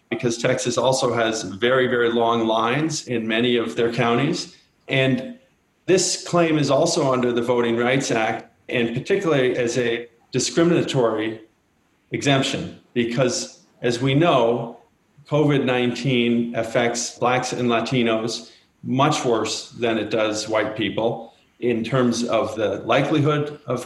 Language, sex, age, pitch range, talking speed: English, male, 40-59, 115-130 Hz, 130 wpm